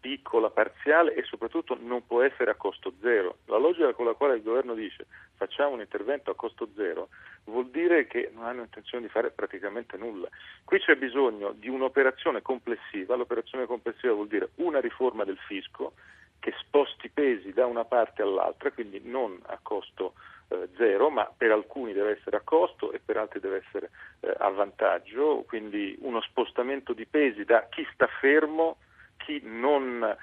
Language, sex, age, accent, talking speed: Italian, male, 40-59, native, 175 wpm